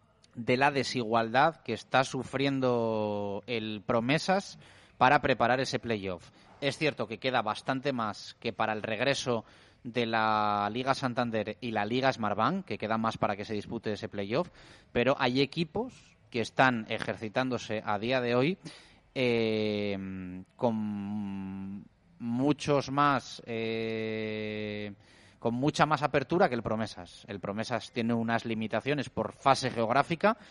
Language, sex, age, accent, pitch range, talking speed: Spanish, male, 30-49, Spanish, 110-130 Hz, 135 wpm